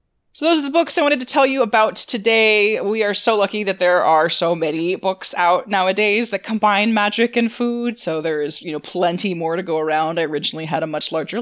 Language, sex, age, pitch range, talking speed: English, female, 20-39, 160-220 Hz, 235 wpm